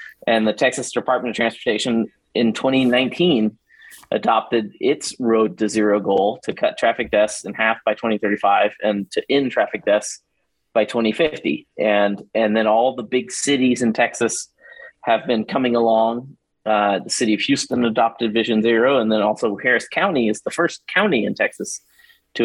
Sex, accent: male, American